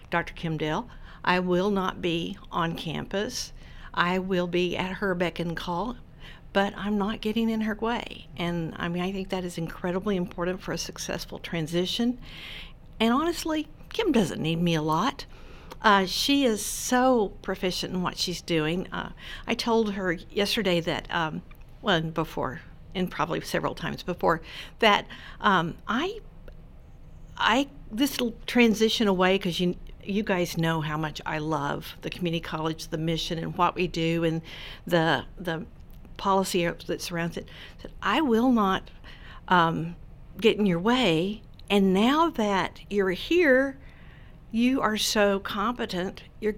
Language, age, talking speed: English, 60-79, 155 wpm